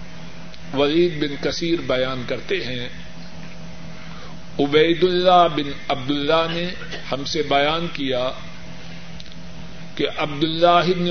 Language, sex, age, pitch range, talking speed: Urdu, male, 50-69, 145-170 Hz, 90 wpm